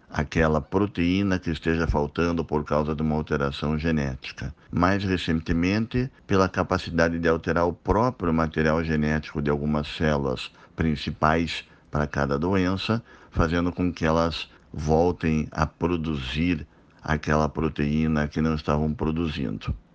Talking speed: 125 wpm